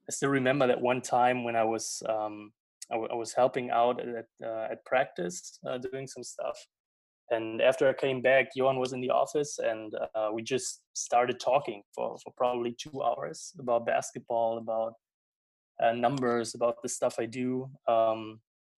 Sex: male